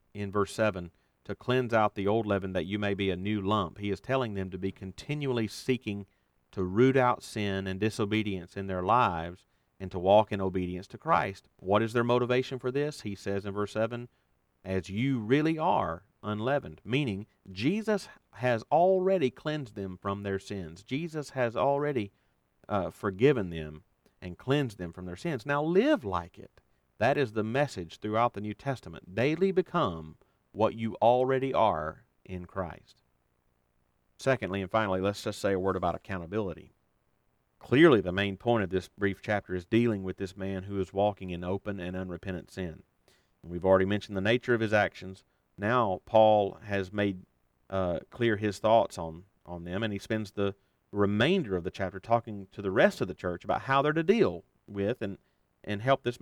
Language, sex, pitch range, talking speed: English, male, 95-120 Hz, 185 wpm